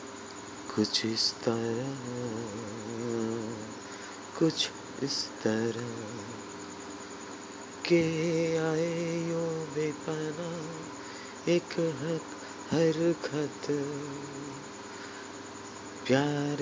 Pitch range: 105-145 Hz